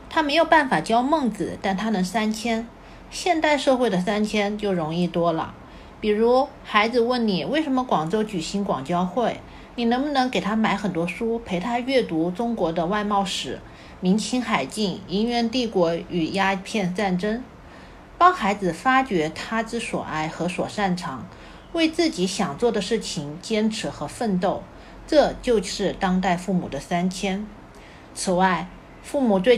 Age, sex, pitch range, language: 50-69, female, 175-235 Hz, Chinese